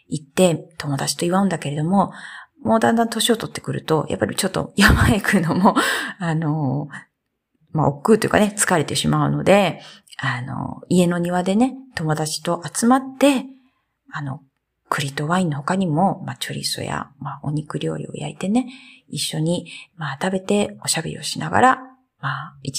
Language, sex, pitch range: Japanese, female, 155-220 Hz